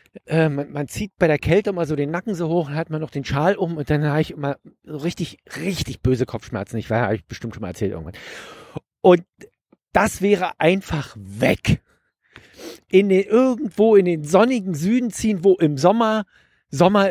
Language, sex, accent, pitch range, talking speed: German, male, German, 130-190 Hz, 195 wpm